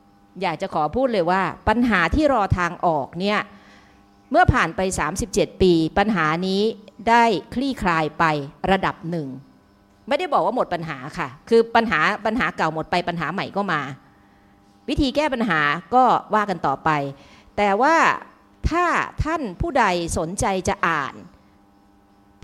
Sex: female